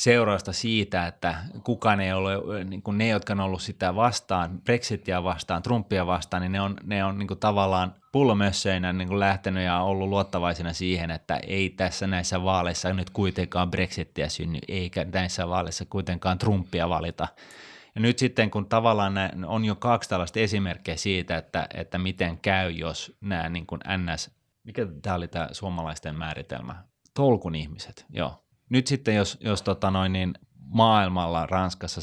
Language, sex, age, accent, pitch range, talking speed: Finnish, male, 30-49, native, 85-100 Hz, 155 wpm